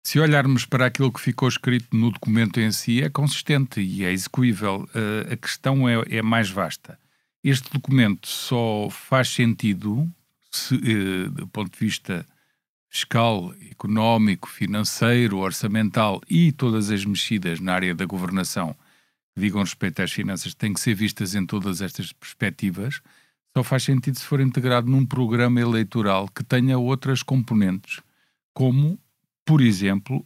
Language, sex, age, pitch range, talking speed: Portuguese, male, 50-69, 110-140 Hz, 145 wpm